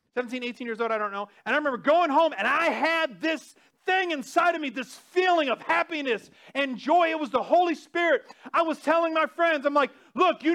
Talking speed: 230 wpm